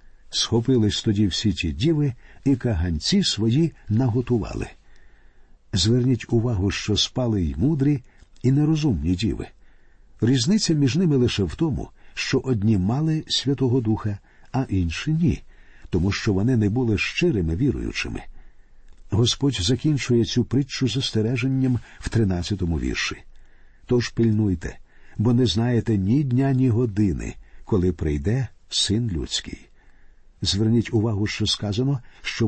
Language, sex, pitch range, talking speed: Ukrainian, male, 100-135 Hz, 120 wpm